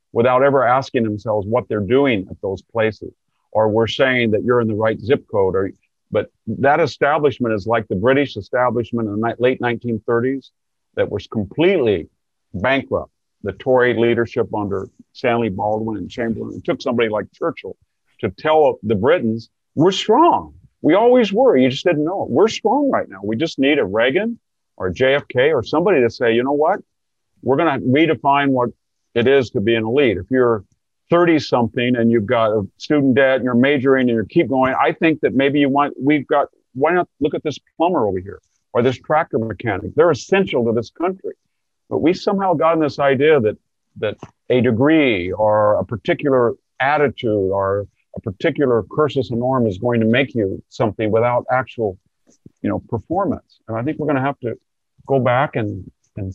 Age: 50-69